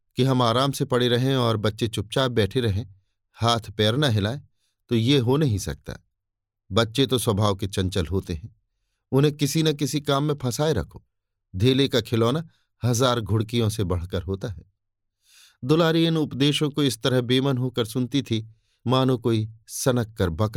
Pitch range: 100-135 Hz